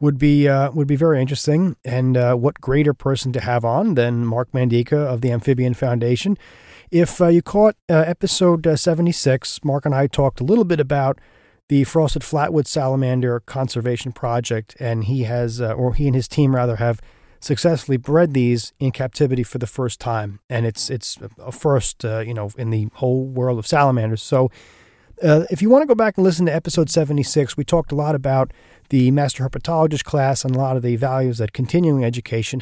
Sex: male